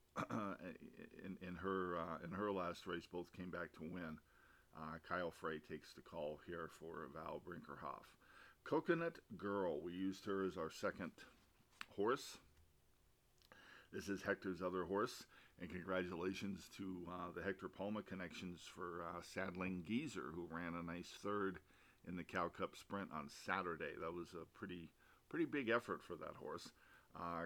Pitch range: 85-95 Hz